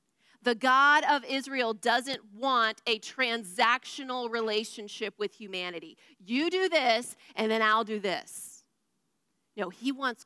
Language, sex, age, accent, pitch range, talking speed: English, female, 30-49, American, 220-290 Hz, 130 wpm